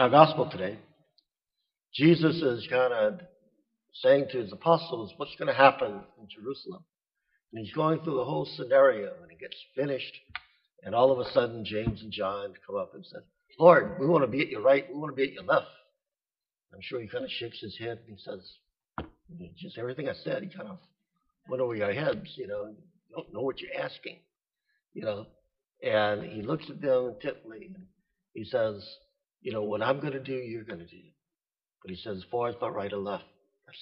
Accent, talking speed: American, 215 wpm